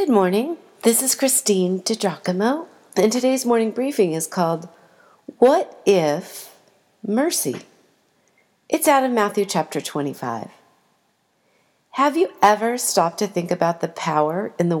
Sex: female